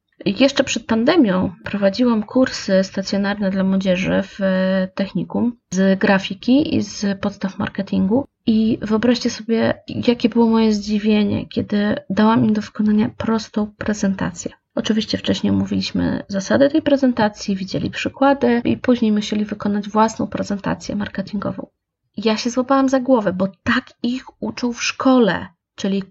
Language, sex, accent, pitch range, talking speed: Polish, female, native, 205-255 Hz, 130 wpm